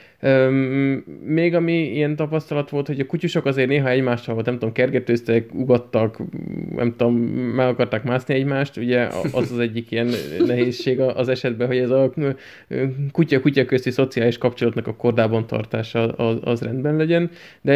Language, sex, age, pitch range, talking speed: Hungarian, male, 20-39, 115-140 Hz, 150 wpm